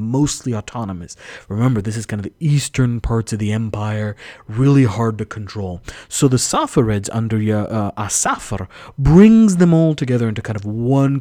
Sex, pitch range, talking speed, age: male, 105-140 Hz, 165 wpm, 30-49